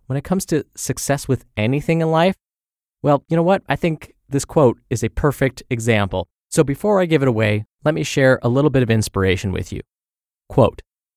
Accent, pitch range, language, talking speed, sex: American, 105-140 Hz, English, 205 wpm, male